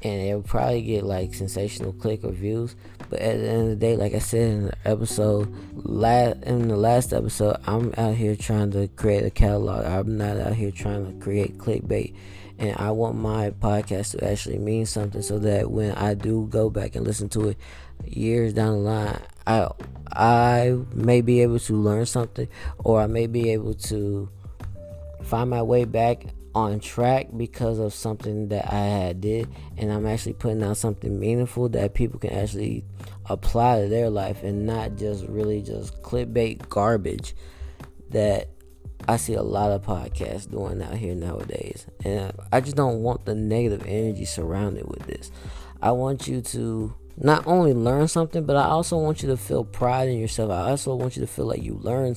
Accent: American